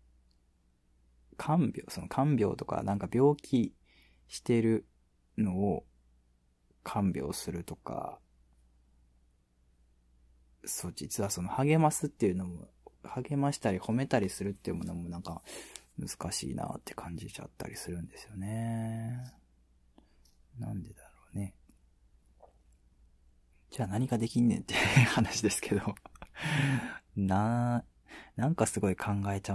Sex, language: male, Japanese